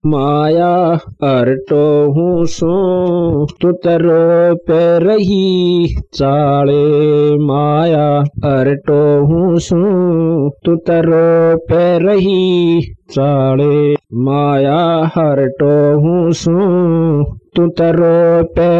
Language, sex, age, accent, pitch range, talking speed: Hindi, male, 50-69, native, 145-175 Hz, 70 wpm